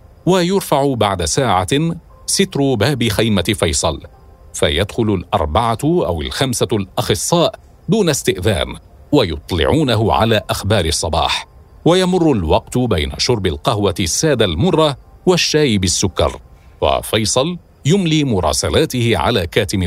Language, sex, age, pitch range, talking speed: Arabic, male, 50-69, 95-140 Hz, 95 wpm